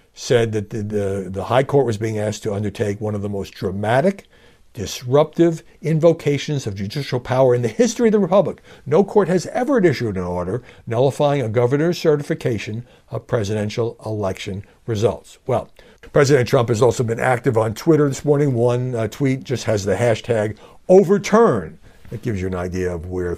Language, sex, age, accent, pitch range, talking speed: English, male, 60-79, American, 110-185 Hz, 175 wpm